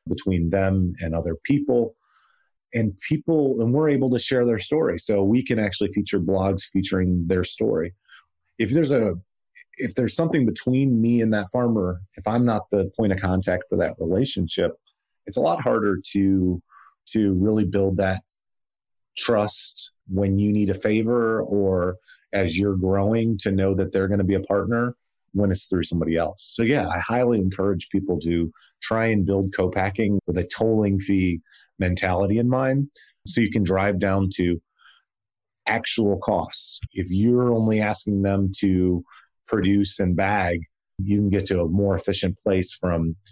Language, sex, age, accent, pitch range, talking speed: English, male, 30-49, American, 90-110 Hz, 165 wpm